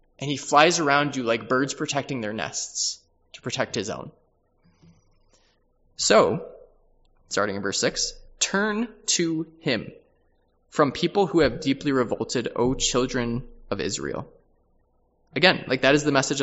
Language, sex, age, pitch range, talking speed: English, male, 20-39, 115-150 Hz, 140 wpm